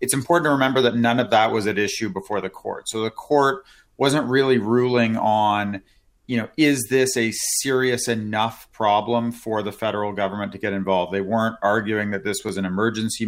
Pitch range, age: 105-120 Hz, 30-49